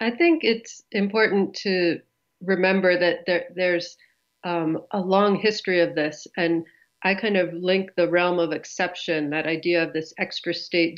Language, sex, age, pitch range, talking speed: English, female, 40-59, 170-195 Hz, 160 wpm